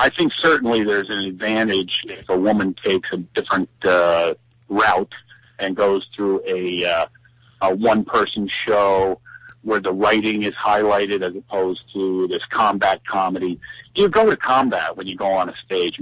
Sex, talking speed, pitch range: male, 165 wpm, 100-120 Hz